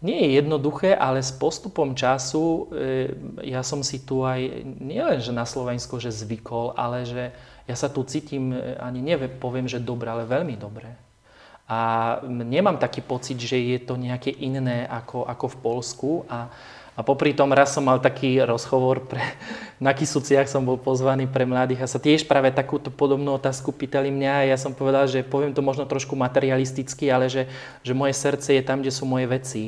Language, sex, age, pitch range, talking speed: Slovak, male, 30-49, 125-140 Hz, 185 wpm